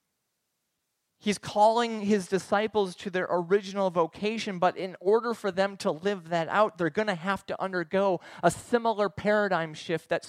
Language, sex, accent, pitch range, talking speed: English, male, American, 160-210 Hz, 165 wpm